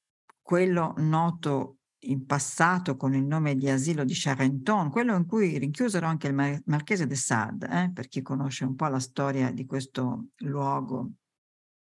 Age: 50-69